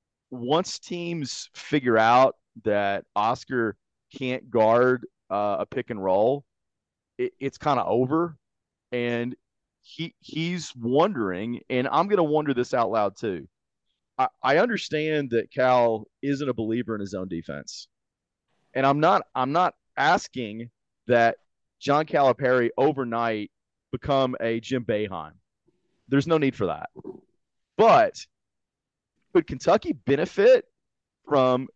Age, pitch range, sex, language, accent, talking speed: 30-49, 115-150 Hz, male, English, American, 125 wpm